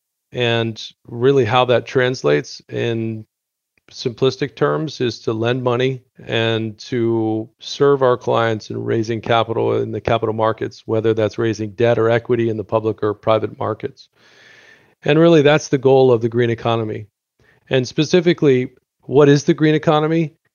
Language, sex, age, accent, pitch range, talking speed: English, male, 40-59, American, 110-135 Hz, 150 wpm